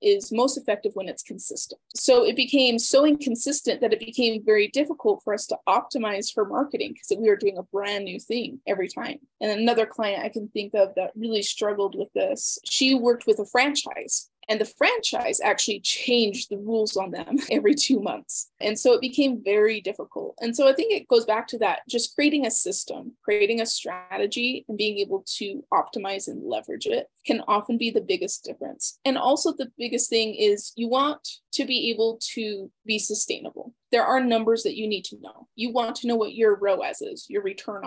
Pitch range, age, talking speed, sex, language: 210-270 Hz, 20-39, 205 wpm, female, English